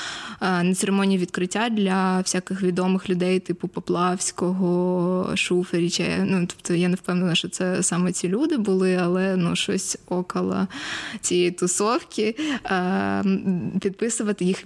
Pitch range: 185-215 Hz